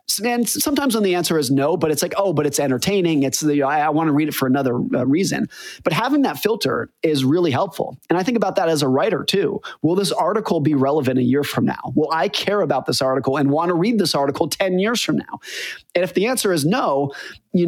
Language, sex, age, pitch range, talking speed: English, male, 30-49, 140-190 Hz, 250 wpm